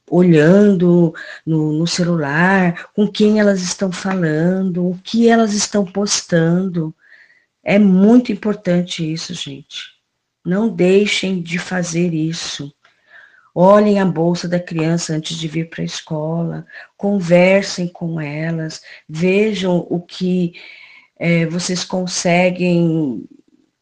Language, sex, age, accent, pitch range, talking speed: Portuguese, female, 40-59, Brazilian, 165-200 Hz, 110 wpm